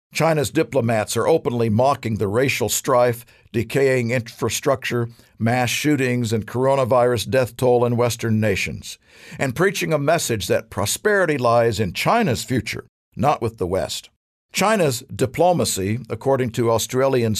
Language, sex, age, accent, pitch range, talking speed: English, male, 50-69, American, 110-135 Hz, 130 wpm